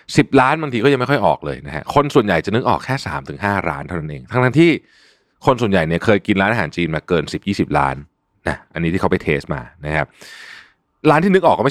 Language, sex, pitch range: Thai, male, 90-140 Hz